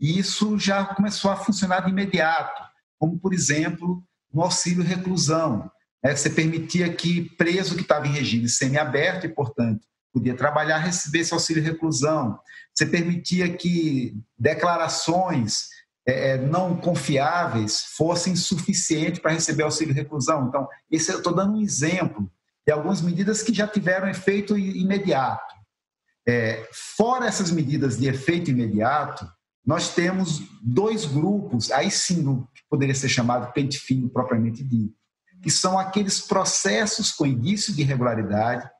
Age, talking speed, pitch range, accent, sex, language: 50-69, 125 wpm, 140-185 Hz, Brazilian, male, Portuguese